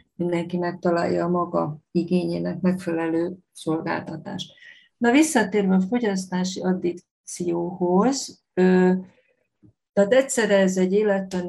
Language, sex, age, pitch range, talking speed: Hungarian, female, 50-69, 175-195 Hz, 95 wpm